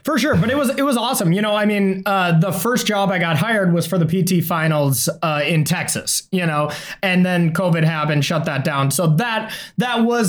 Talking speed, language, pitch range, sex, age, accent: 235 wpm, English, 160-205 Hz, male, 20-39, American